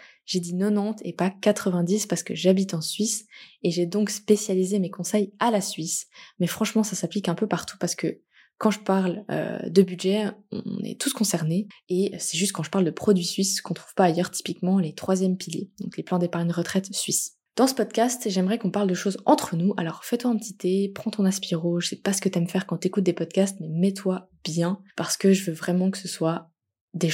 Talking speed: 235 wpm